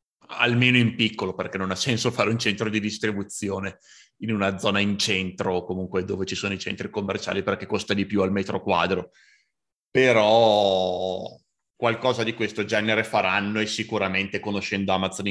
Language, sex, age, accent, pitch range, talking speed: Italian, male, 30-49, native, 95-110 Hz, 160 wpm